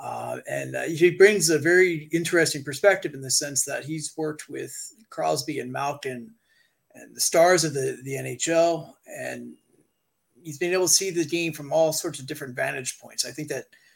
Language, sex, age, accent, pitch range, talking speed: English, male, 30-49, American, 135-170 Hz, 190 wpm